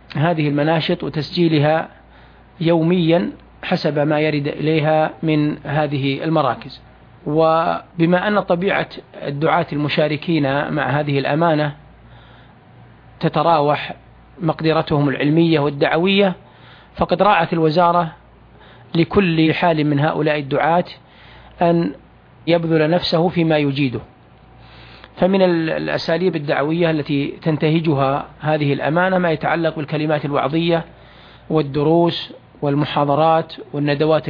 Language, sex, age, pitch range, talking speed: Arabic, male, 40-59, 150-170 Hz, 85 wpm